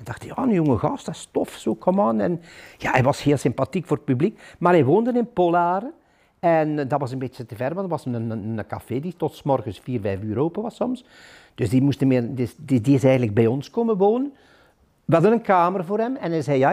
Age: 60-79